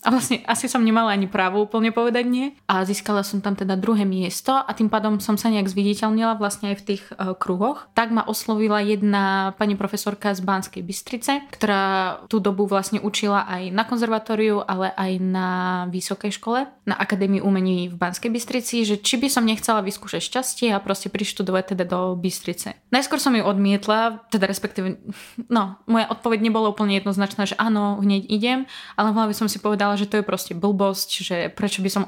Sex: female